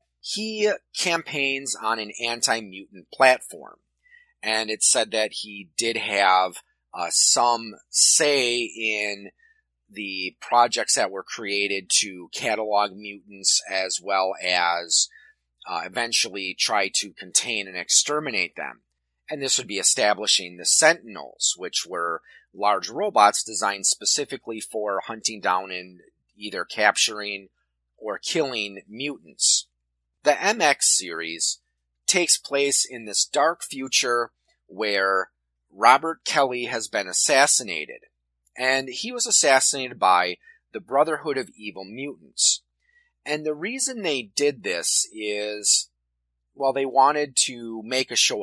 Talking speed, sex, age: 120 wpm, male, 30-49